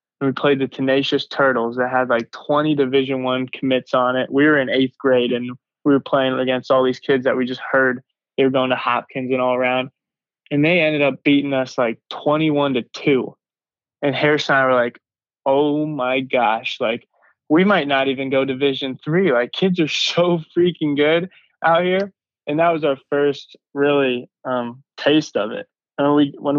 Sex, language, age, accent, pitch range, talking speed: male, English, 20-39, American, 130-145 Hz, 200 wpm